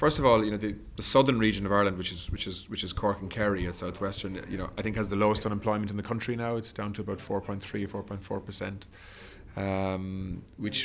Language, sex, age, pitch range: English, male, 30-49, 95-110 Hz